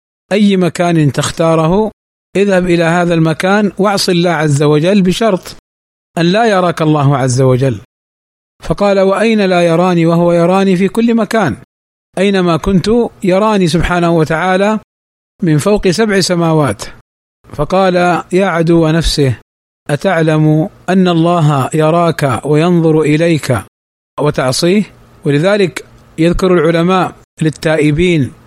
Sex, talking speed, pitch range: male, 110 wpm, 150-185 Hz